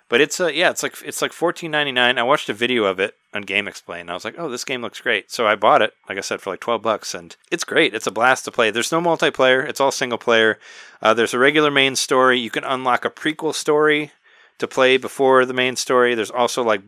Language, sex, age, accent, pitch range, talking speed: English, male, 30-49, American, 110-130 Hz, 265 wpm